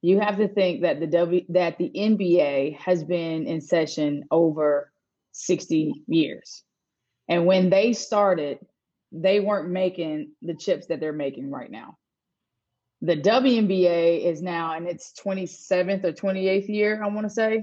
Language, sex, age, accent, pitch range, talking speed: English, female, 20-39, American, 170-200 Hz, 155 wpm